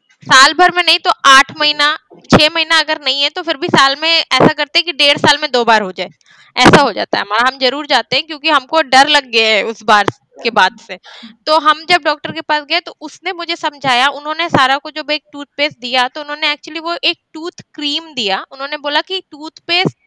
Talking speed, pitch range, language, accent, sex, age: 235 wpm, 250-320 Hz, Hindi, native, female, 20-39